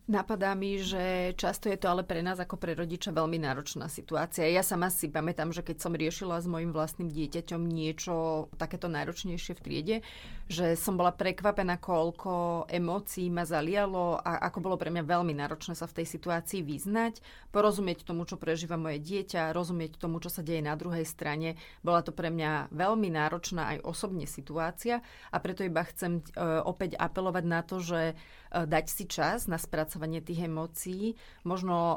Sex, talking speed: female, 170 wpm